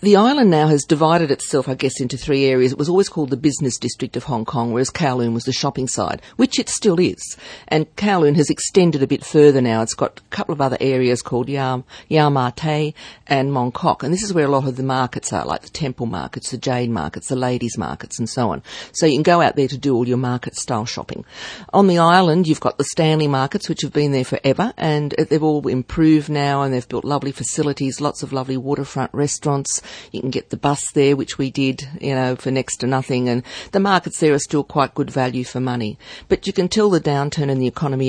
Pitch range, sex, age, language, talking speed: 125-150 Hz, female, 50-69, English, 235 wpm